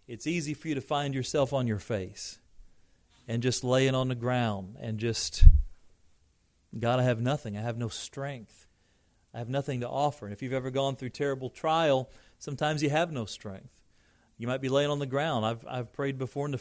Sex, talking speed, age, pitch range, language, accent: male, 205 wpm, 40-59, 110-140 Hz, English, American